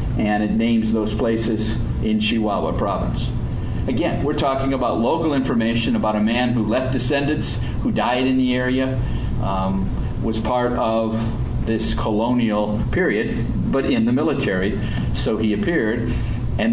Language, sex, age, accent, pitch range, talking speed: English, male, 50-69, American, 110-130 Hz, 145 wpm